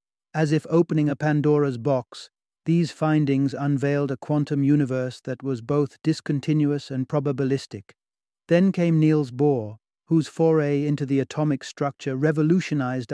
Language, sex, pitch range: English, male, 130-150 Hz